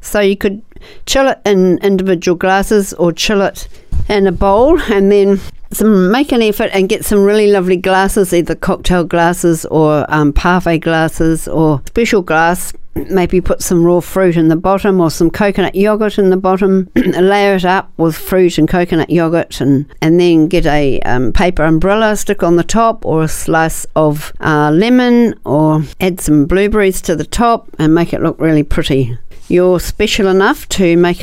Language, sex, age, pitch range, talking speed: English, female, 60-79, 165-200 Hz, 180 wpm